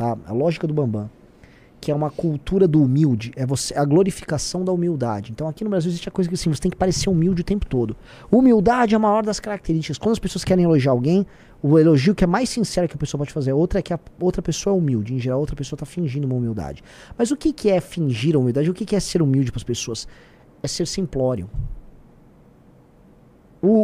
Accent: Brazilian